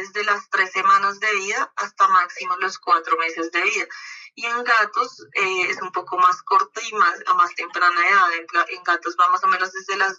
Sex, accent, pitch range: female, Colombian, 180-210 Hz